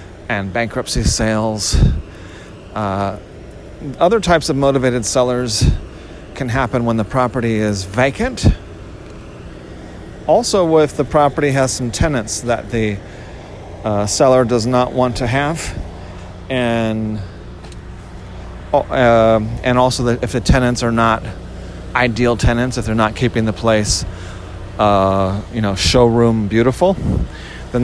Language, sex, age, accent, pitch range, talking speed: English, male, 40-59, American, 95-125 Hz, 120 wpm